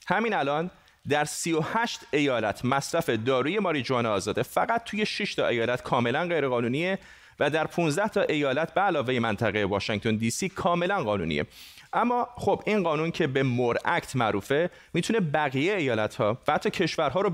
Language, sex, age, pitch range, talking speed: Persian, male, 30-49, 125-175 Hz, 150 wpm